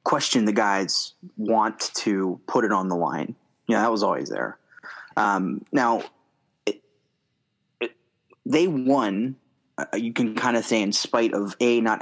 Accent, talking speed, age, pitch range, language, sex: American, 165 wpm, 20-39, 105-120 Hz, English, male